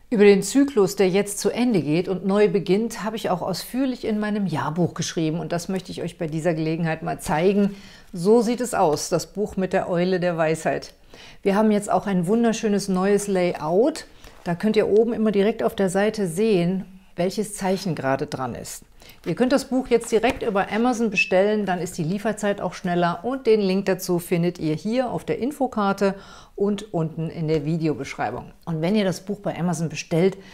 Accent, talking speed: German, 200 wpm